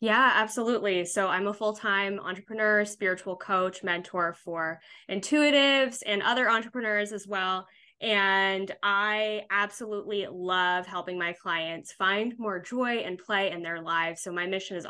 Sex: female